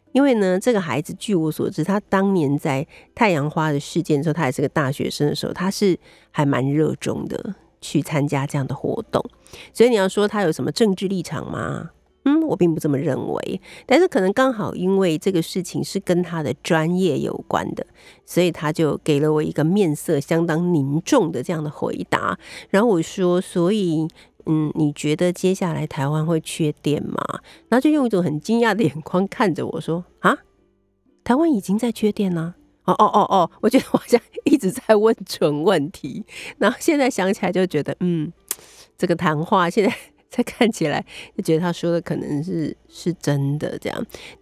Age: 50-69